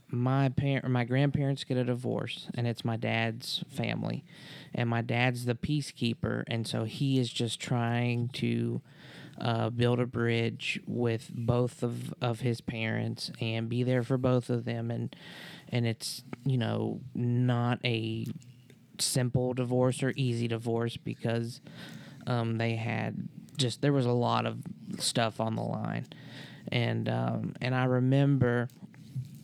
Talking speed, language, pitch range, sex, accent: 145 wpm, English, 115-135 Hz, male, American